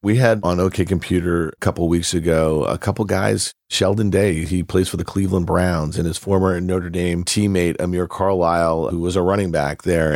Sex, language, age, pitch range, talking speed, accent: male, English, 40-59, 90-105 Hz, 205 wpm, American